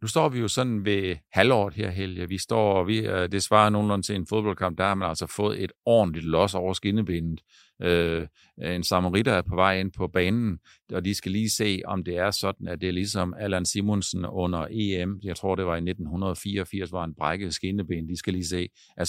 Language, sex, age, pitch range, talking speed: Danish, male, 50-69, 90-110 Hz, 215 wpm